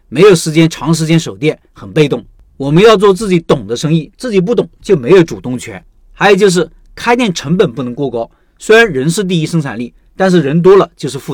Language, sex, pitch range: Chinese, male, 145-190 Hz